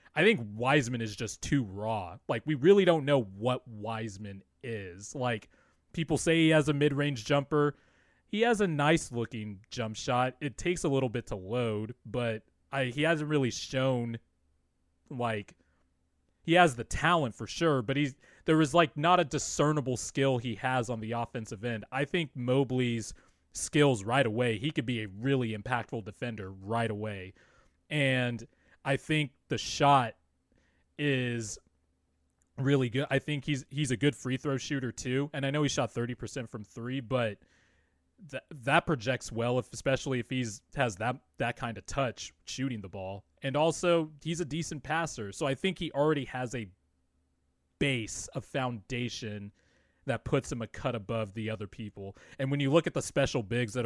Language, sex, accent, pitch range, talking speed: English, male, American, 110-140 Hz, 175 wpm